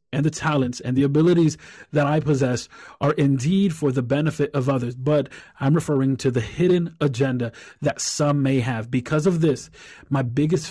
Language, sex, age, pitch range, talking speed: English, male, 30-49, 125-150 Hz, 180 wpm